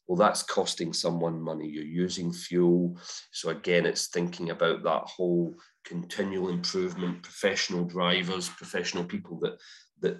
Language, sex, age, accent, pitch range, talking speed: English, male, 40-59, British, 80-90 Hz, 135 wpm